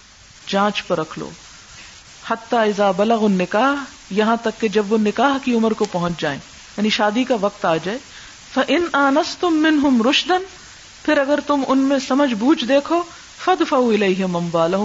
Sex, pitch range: female, 205-275 Hz